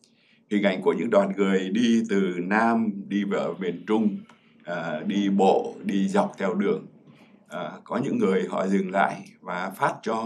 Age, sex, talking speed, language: 60-79, male, 175 wpm, Vietnamese